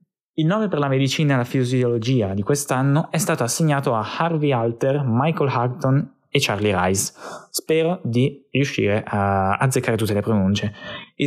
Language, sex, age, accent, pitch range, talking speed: Italian, male, 10-29, native, 105-140 Hz, 160 wpm